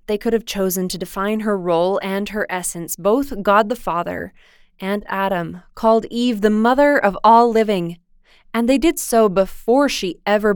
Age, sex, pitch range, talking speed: 20-39, female, 185-225 Hz, 170 wpm